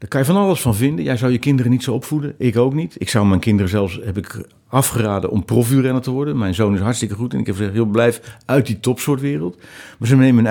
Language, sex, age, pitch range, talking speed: Dutch, male, 50-69, 105-135 Hz, 265 wpm